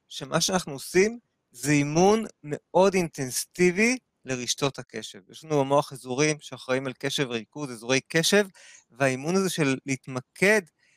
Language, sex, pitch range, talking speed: Hebrew, male, 135-180 Hz, 125 wpm